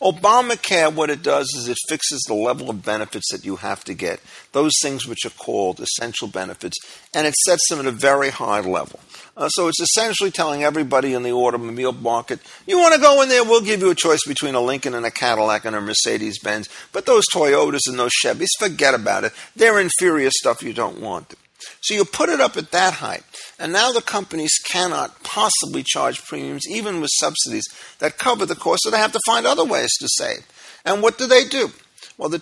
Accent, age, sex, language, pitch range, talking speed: American, 50-69, male, English, 135-210 Hz, 215 wpm